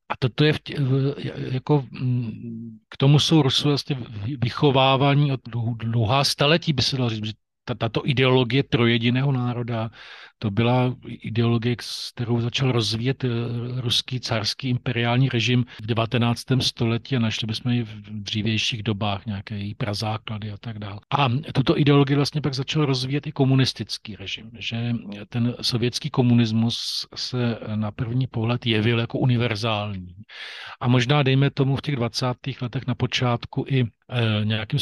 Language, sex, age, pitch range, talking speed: Slovak, male, 40-59, 115-130 Hz, 145 wpm